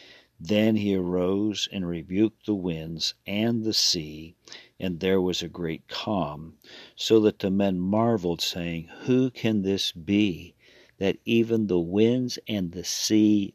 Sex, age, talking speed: male, 50-69, 145 wpm